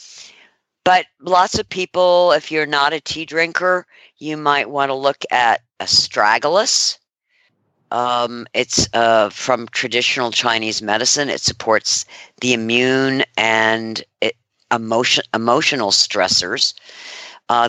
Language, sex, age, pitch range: English, female, 50-69, 115-145 Hz